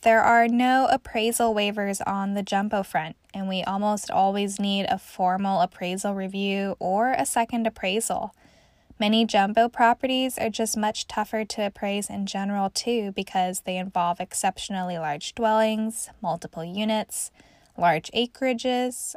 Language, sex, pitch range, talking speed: English, female, 195-235 Hz, 140 wpm